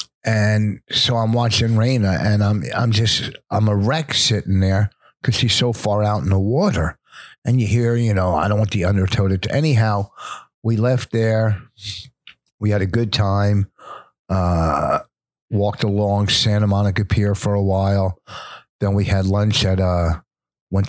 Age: 50-69